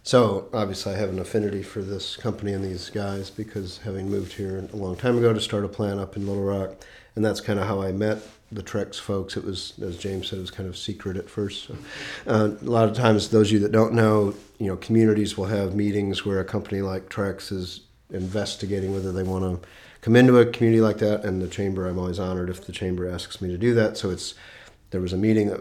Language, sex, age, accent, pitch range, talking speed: English, male, 40-59, American, 95-105 Hz, 250 wpm